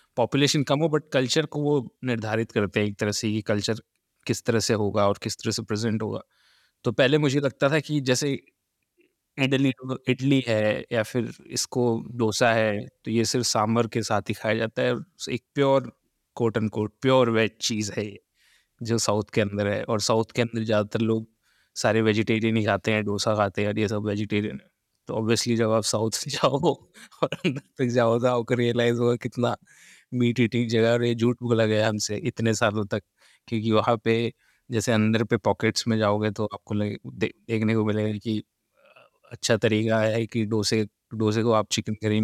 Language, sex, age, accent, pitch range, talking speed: Hindi, male, 20-39, native, 105-120 Hz, 180 wpm